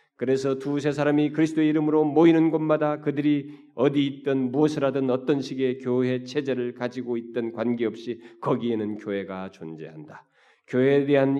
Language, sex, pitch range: Korean, male, 120-175 Hz